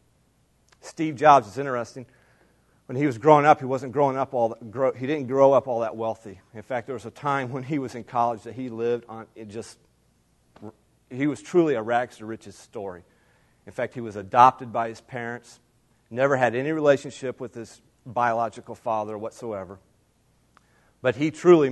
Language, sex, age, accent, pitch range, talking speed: English, male, 40-59, American, 115-145 Hz, 185 wpm